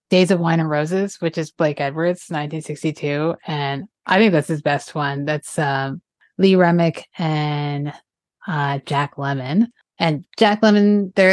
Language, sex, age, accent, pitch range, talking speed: English, female, 20-39, American, 140-170 Hz, 155 wpm